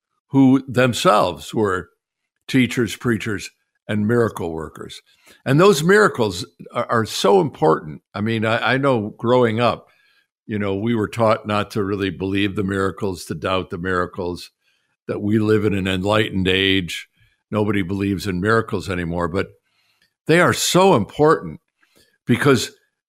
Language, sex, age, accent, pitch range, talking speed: English, male, 60-79, American, 95-130 Hz, 145 wpm